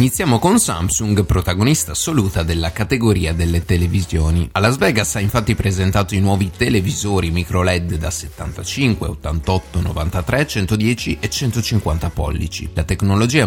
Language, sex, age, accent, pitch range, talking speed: Italian, male, 30-49, native, 85-110 Hz, 130 wpm